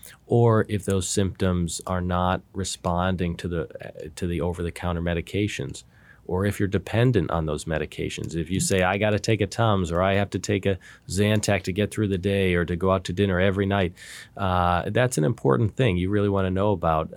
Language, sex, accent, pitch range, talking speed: English, male, American, 85-100 Hz, 210 wpm